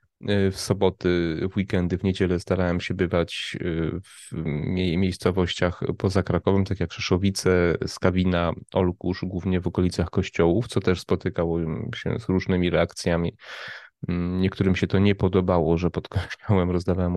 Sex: male